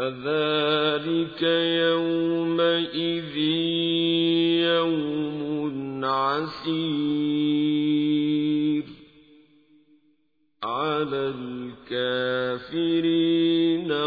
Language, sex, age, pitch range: Arabic, male, 50-69, 130-165 Hz